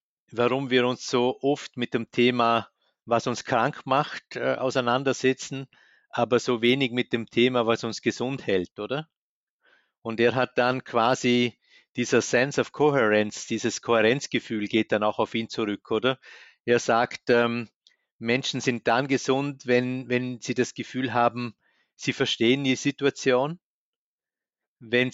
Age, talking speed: 50-69, 145 wpm